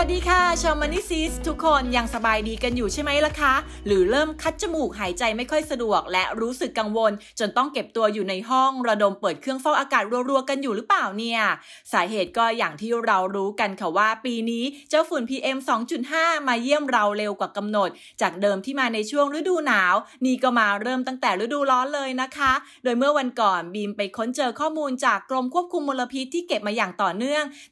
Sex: female